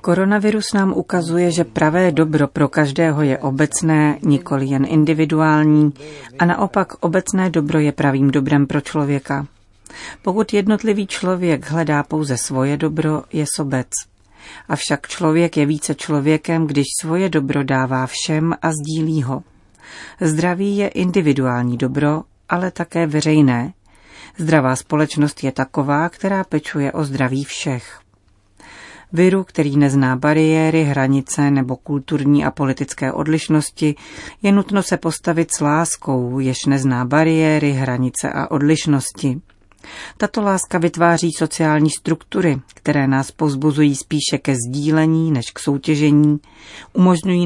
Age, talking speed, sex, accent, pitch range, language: 40-59, 125 wpm, female, native, 140-165 Hz, Czech